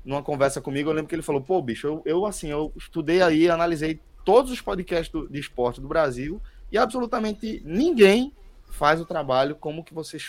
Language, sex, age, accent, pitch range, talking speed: Portuguese, male, 20-39, Brazilian, 120-160 Hz, 200 wpm